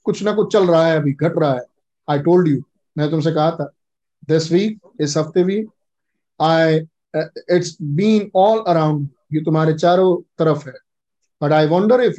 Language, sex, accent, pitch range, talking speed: Hindi, male, native, 160-190 Hz, 175 wpm